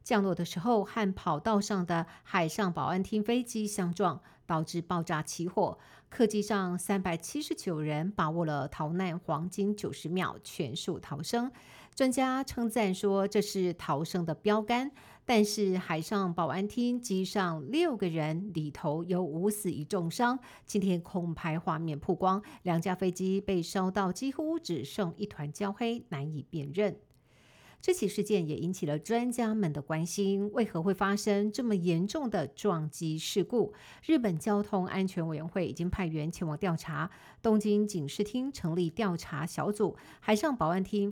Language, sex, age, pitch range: Chinese, female, 50-69, 170-210 Hz